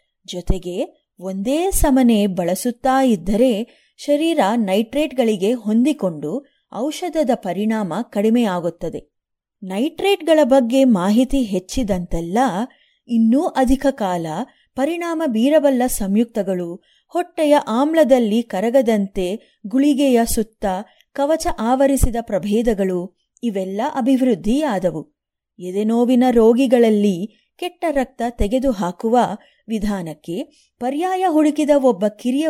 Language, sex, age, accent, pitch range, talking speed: Kannada, female, 20-39, native, 205-275 Hz, 75 wpm